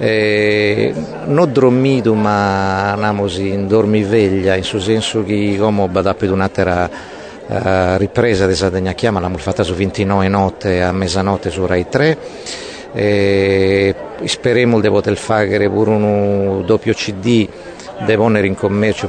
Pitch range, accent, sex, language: 95-115 Hz, native, male, Italian